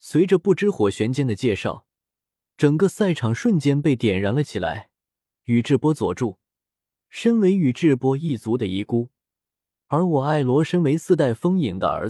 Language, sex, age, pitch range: Chinese, male, 20-39, 110-165 Hz